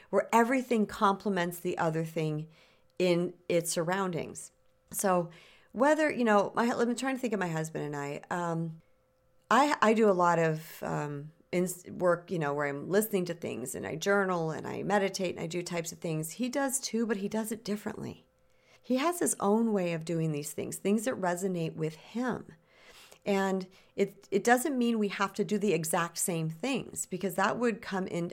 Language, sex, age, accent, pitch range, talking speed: English, female, 50-69, American, 165-215 Hz, 195 wpm